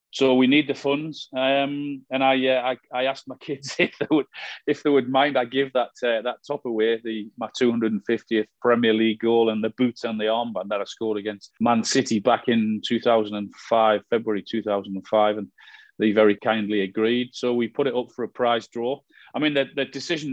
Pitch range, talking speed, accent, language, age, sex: 110-135 Hz, 205 wpm, British, English, 40-59, male